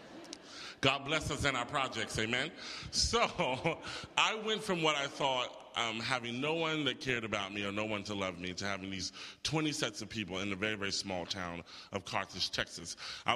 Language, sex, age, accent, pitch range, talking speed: English, male, 30-49, American, 105-145 Hz, 200 wpm